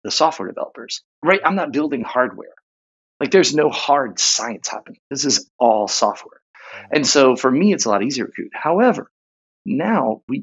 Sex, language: male, English